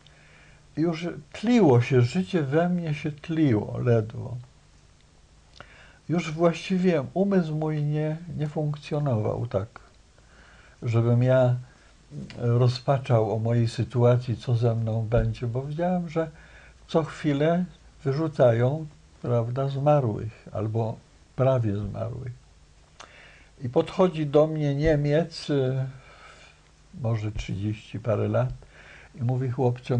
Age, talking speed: 60-79, 100 wpm